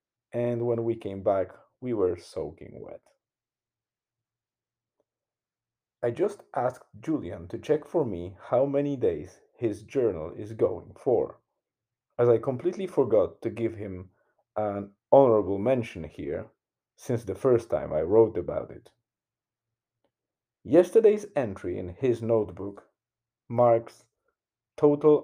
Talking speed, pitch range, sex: 120 wpm, 105-130 Hz, male